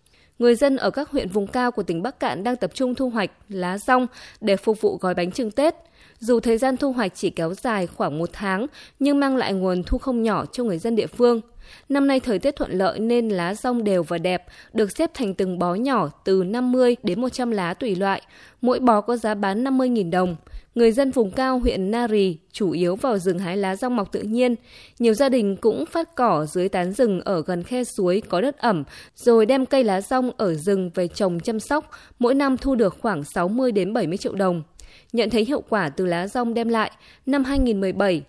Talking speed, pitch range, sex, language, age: 225 wpm, 190-250 Hz, female, Vietnamese, 20-39